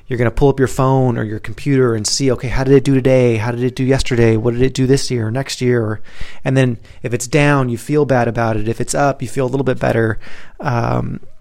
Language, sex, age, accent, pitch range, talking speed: English, male, 30-49, American, 115-135 Hz, 270 wpm